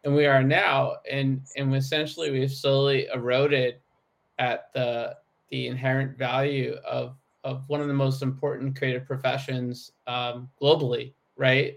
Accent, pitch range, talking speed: American, 130-145 Hz, 140 wpm